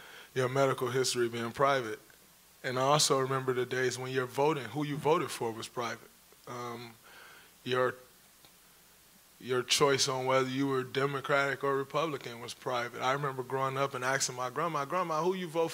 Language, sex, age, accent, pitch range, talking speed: English, male, 20-39, American, 130-155 Hz, 170 wpm